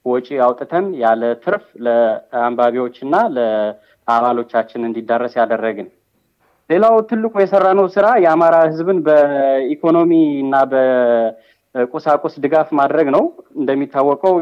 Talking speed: 85 wpm